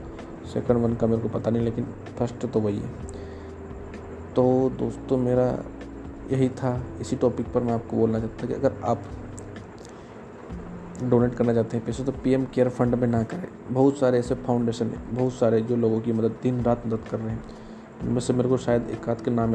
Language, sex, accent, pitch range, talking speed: Hindi, male, native, 110-125 Hz, 195 wpm